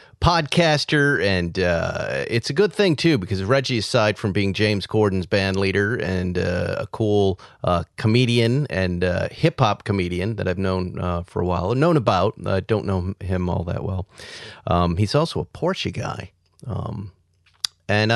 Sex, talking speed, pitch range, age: male, 170 wpm, 95-145 Hz, 40-59